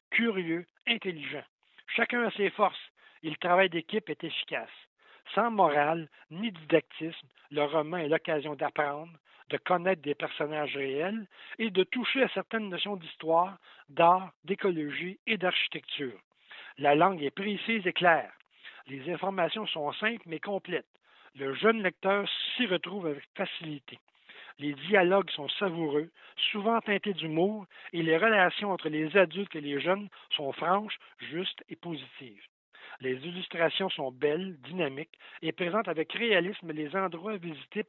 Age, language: 60-79, French